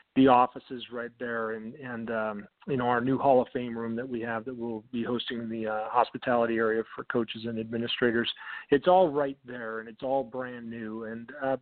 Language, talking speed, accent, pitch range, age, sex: English, 215 wpm, American, 115-130 Hz, 40-59, male